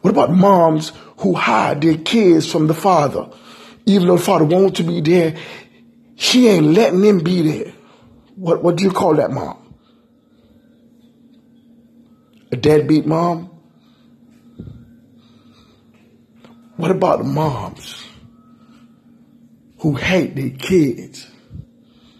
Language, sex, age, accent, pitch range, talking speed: English, male, 50-69, American, 155-240 Hz, 115 wpm